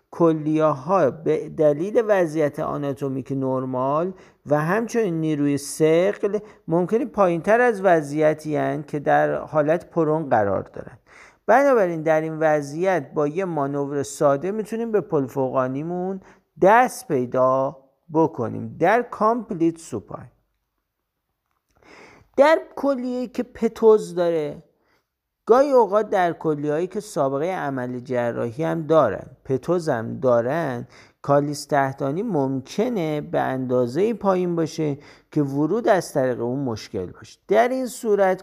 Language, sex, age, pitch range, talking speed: Persian, male, 50-69, 135-195 Hz, 110 wpm